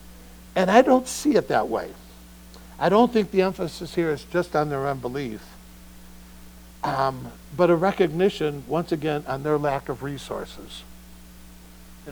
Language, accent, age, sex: English, American, 60-79, male